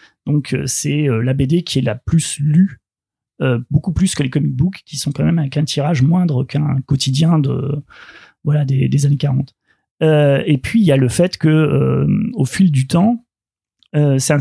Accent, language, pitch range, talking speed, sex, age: French, French, 145-170 Hz, 200 wpm, male, 30-49